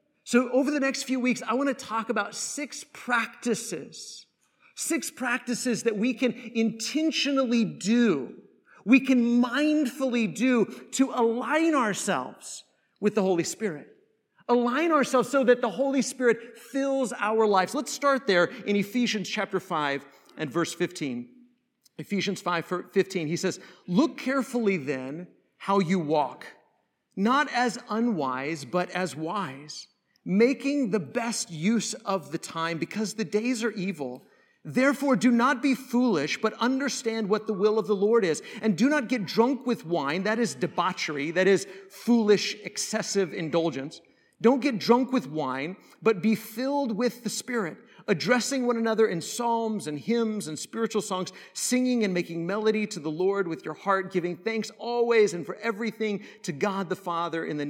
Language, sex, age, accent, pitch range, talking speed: English, male, 50-69, American, 185-245 Hz, 160 wpm